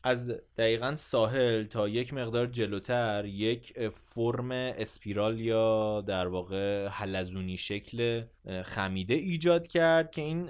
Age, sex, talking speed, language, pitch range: 20-39, male, 115 wpm, Persian, 100-130 Hz